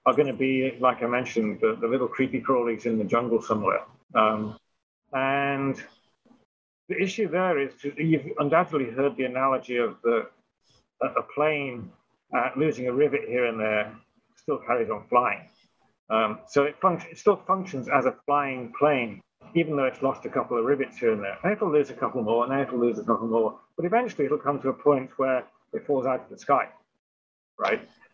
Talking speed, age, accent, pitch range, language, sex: 200 wpm, 40-59, British, 120-150 Hz, English, male